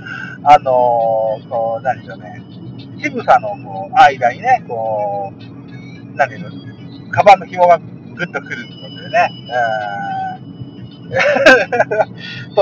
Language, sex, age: Japanese, male, 50-69